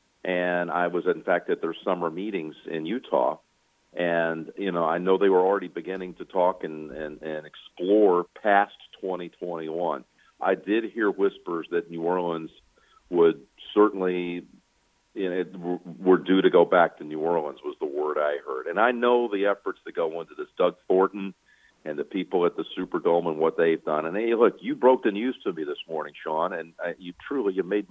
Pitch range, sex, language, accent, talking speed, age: 85-105 Hz, male, English, American, 190 wpm, 50-69